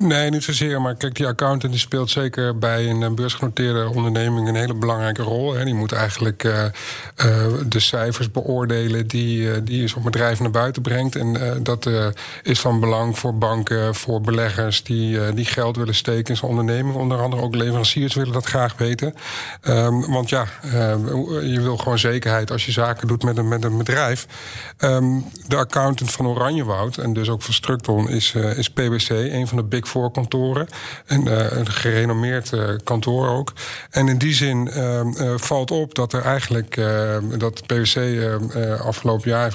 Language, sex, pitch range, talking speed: Dutch, male, 115-130 Hz, 190 wpm